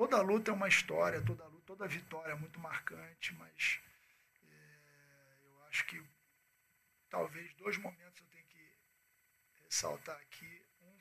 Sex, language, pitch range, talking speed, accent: male, Portuguese, 160-195 Hz, 140 wpm, Brazilian